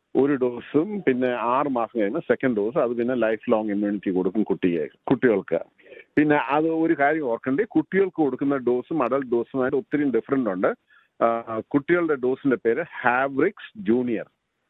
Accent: native